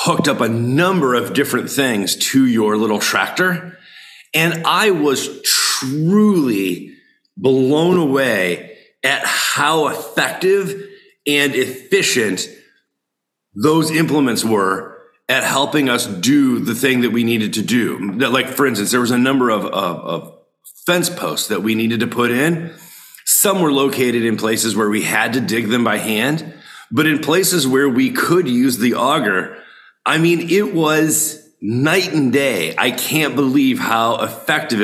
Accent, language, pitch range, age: American, English, 120-165 Hz, 40-59